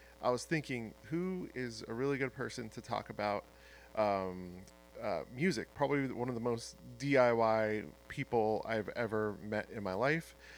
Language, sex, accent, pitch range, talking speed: English, male, American, 105-145 Hz, 160 wpm